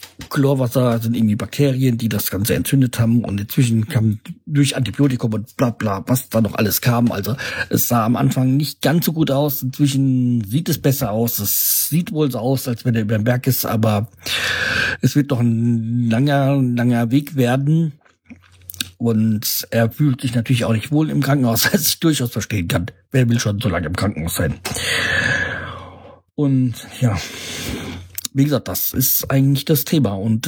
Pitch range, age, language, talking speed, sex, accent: 115-135 Hz, 50-69, German, 180 wpm, male, German